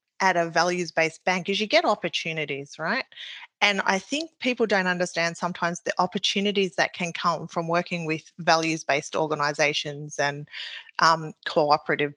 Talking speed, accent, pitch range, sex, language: 145 wpm, Australian, 160-195 Hz, female, English